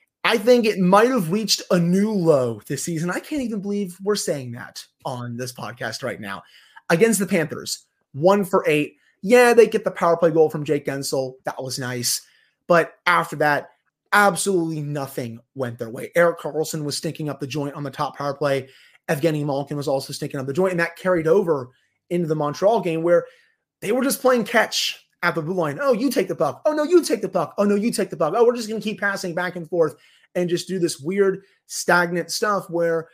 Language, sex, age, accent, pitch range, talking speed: English, male, 30-49, American, 145-200 Hz, 220 wpm